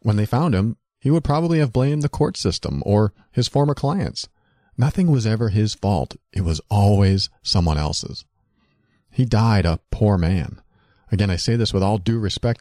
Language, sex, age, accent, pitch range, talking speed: English, male, 40-59, American, 90-120 Hz, 185 wpm